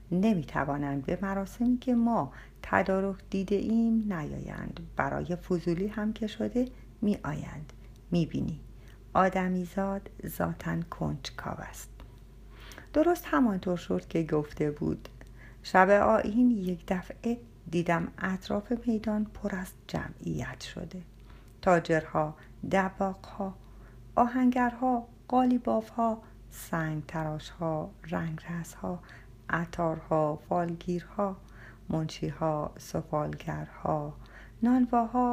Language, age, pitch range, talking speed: Persian, 50-69, 130-205 Hz, 85 wpm